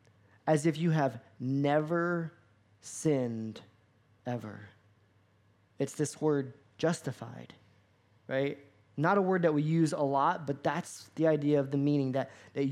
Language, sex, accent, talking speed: English, male, American, 135 wpm